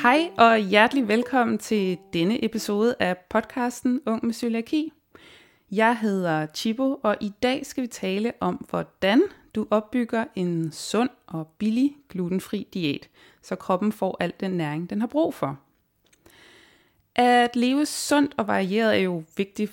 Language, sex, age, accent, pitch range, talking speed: Danish, female, 30-49, native, 185-245 Hz, 150 wpm